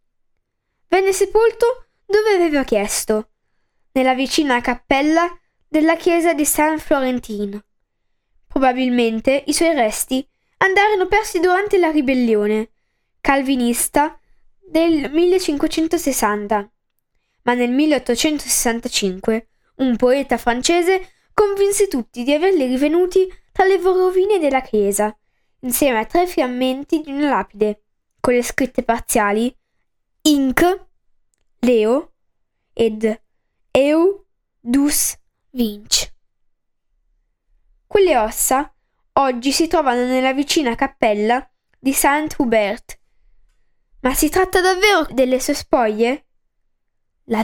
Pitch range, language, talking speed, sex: 240-325 Hz, Italian, 95 wpm, female